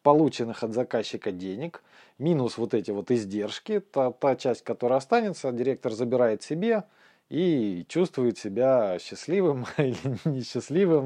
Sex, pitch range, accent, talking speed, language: male, 115-155 Hz, native, 125 wpm, Russian